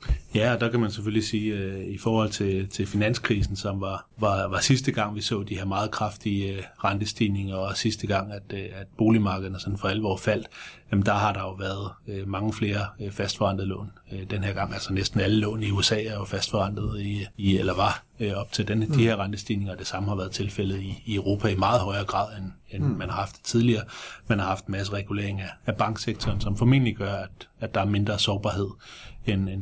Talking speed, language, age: 205 wpm, Danish, 30-49